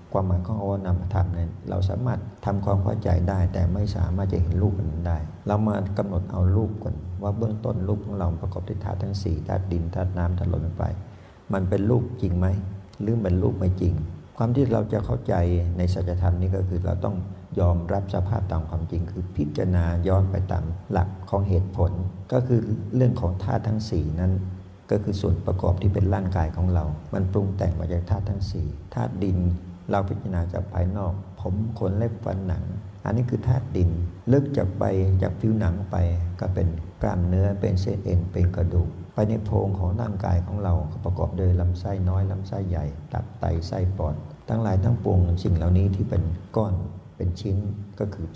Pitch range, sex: 90-100 Hz, male